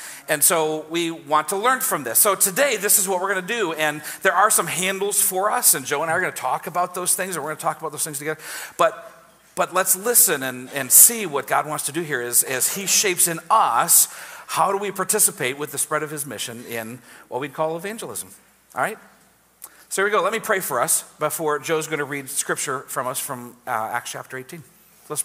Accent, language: American, English